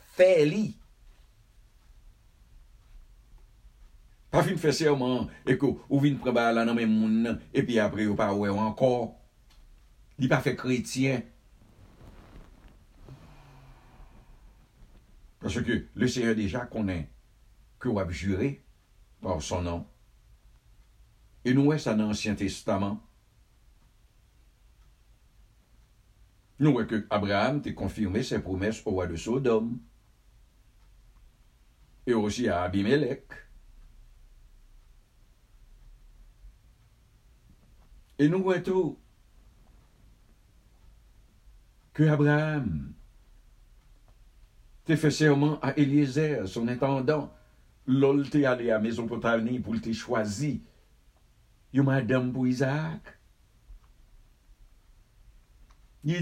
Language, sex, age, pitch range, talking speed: English, male, 60-79, 105-135 Hz, 95 wpm